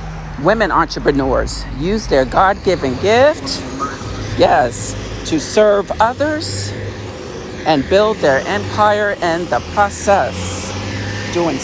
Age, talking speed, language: 50-69, 95 wpm, English